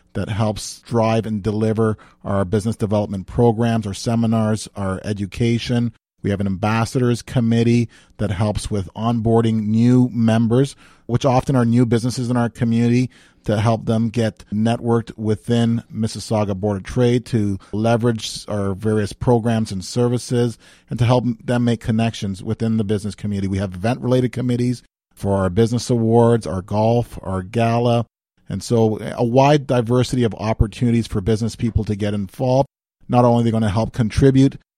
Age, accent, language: 40-59, American, English